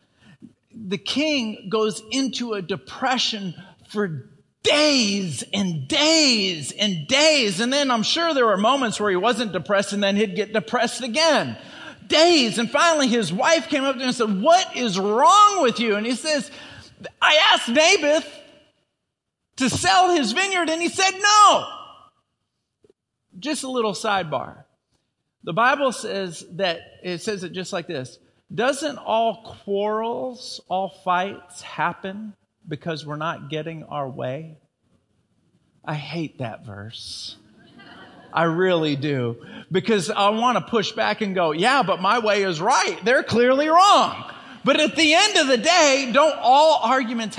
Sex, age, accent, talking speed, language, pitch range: male, 50-69, American, 150 wpm, English, 190-285 Hz